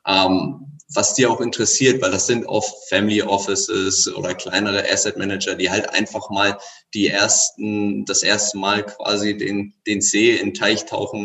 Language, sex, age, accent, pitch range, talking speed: German, male, 20-39, German, 105-135 Hz, 170 wpm